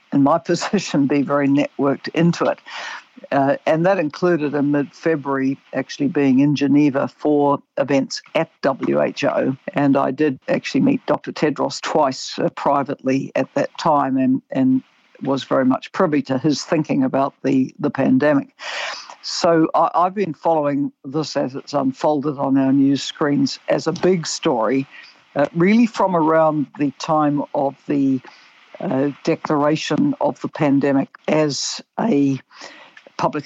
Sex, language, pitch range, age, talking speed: female, English, 140-170 Hz, 60-79, 140 wpm